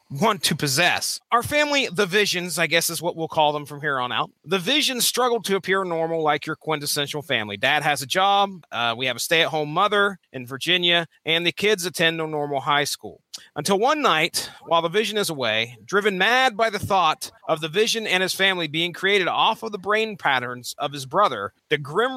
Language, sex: English, male